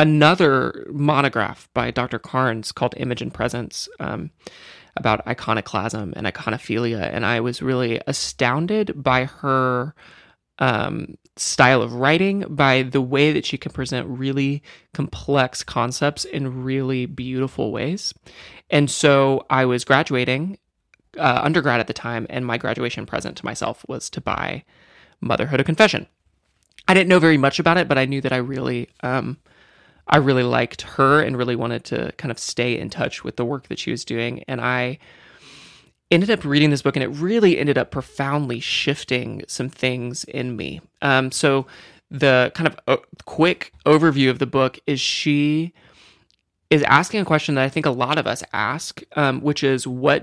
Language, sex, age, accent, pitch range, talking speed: English, male, 20-39, American, 125-145 Hz, 170 wpm